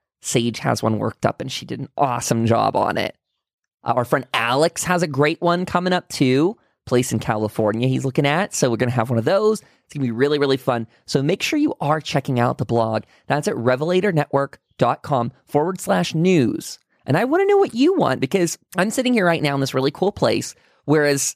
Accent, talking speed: American, 225 wpm